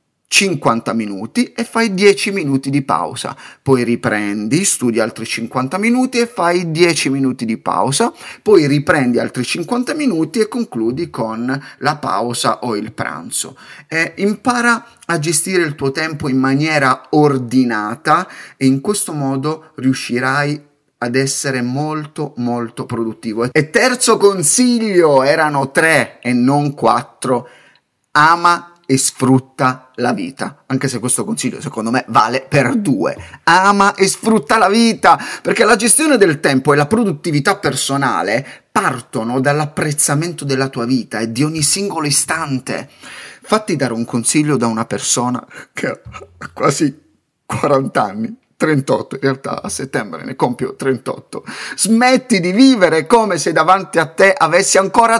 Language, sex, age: Italian, male, 30-49